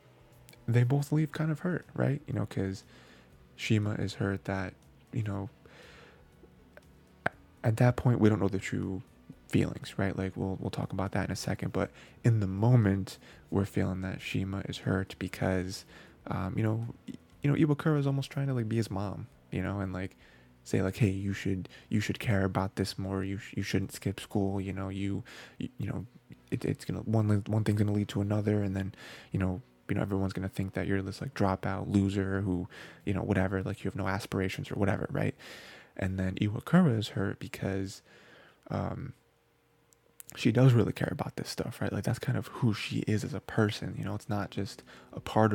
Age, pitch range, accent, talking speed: 20-39, 95-115 Hz, American, 205 wpm